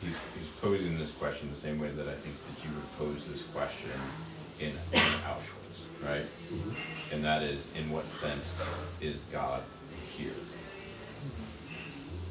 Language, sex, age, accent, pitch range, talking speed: English, male, 30-49, American, 75-85 Hz, 145 wpm